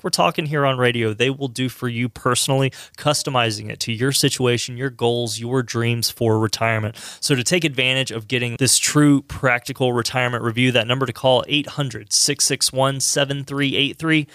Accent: American